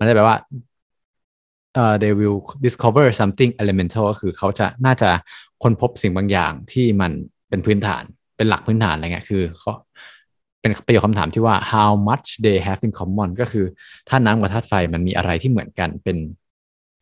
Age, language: 20-39, Thai